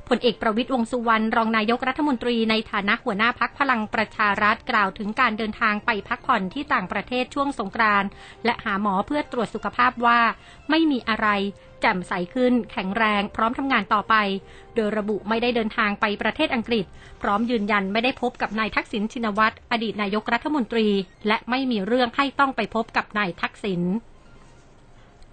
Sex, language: female, Thai